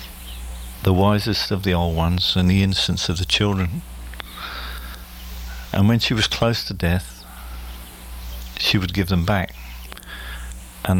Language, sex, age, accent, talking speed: English, male, 50-69, British, 135 wpm